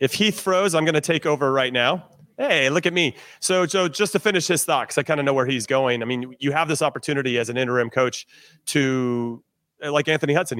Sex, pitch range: male, 125-155 Hz